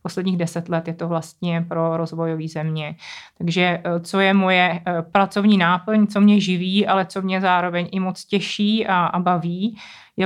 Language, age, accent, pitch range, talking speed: Czech, 20-39, native, 175-195 Hz, 170 wpm